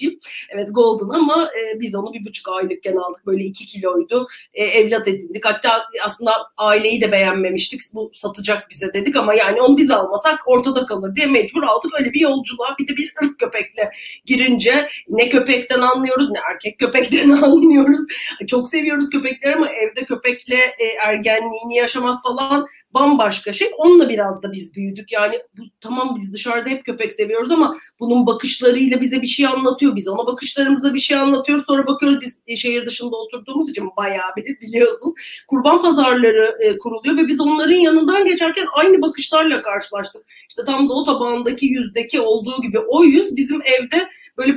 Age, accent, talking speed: 30-49, native, 160 wpm